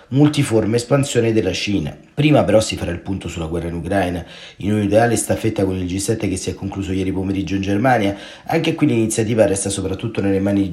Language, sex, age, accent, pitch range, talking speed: Italian, male, 30-49, native, 95-120 Hz, 205 wpm